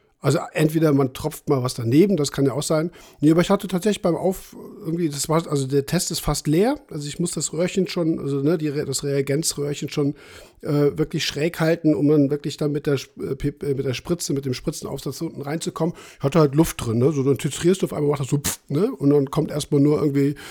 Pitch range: 135-160 Hz